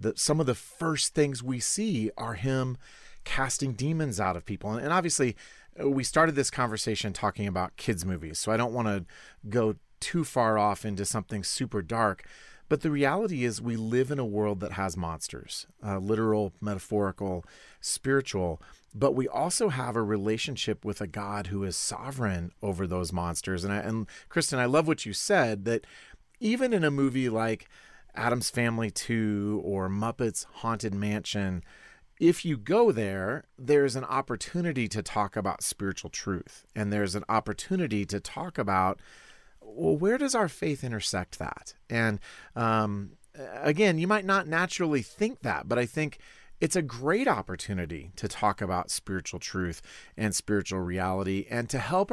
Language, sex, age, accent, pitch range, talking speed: English, male, 40-59, American, 100-135 Hz, 165 wpm